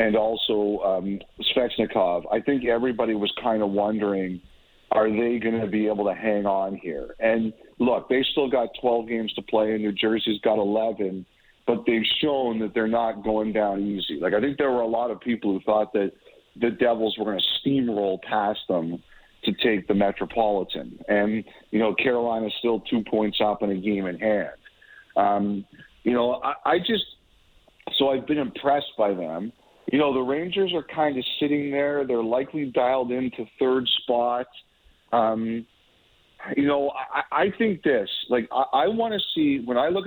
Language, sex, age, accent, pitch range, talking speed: English, male, 40-59, American, 105-135 Hz, 185 wpm